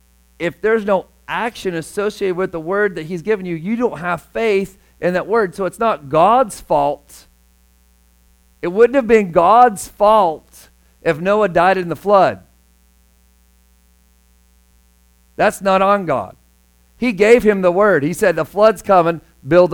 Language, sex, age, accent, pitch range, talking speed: English, male, 50-69, American, 130-185 Hz, 155 wpm